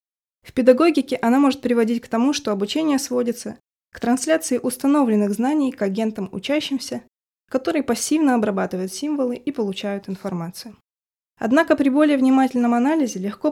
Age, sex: 20-39, female